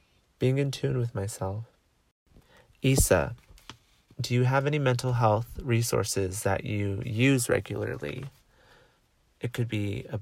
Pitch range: 100-120 Hz